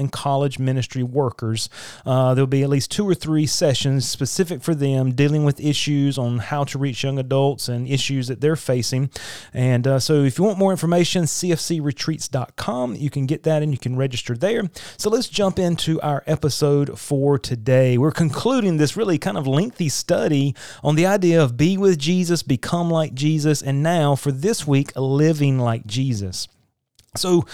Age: 30-49